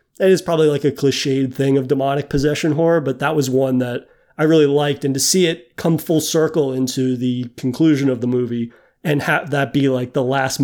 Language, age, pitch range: English, 30-49, 130-155 Hz